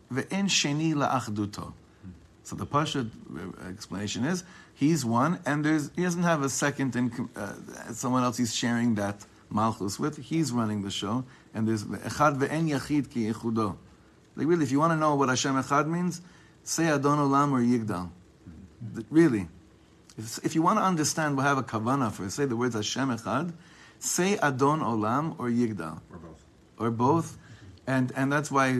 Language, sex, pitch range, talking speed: English, male, 110-145 Hz, 160 wpm